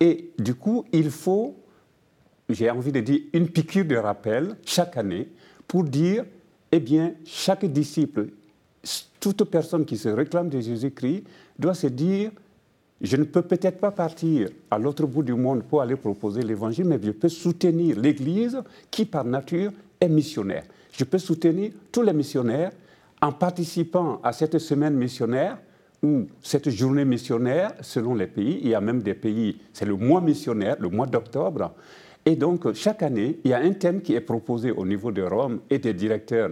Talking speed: 175 wpm